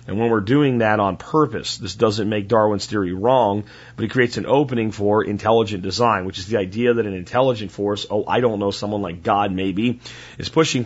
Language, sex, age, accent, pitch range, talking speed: French, male, 40-59, American, 100-120 Hz, 215 wpm